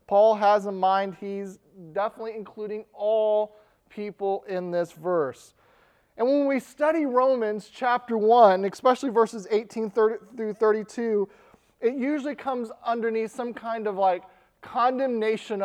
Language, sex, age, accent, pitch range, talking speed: English, male, 30-49, American, 195-245 Hz, 125 wpm